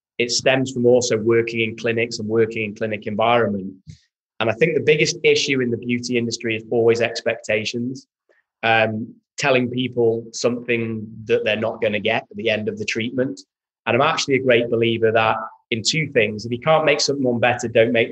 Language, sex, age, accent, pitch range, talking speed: English, male, 20-39, British, 120-145 Hz, 190 wpm